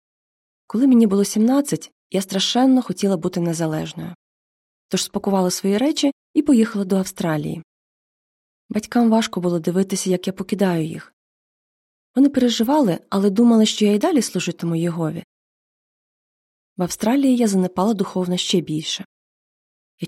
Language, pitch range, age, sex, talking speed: Ukrainian, 185-235 Hz, 20-39, female, 130 wpm